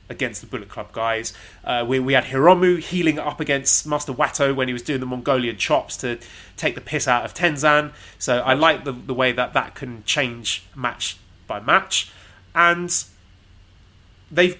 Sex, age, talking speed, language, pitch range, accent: male, 30-49, 180 wpm, English, 115-155 Hz, British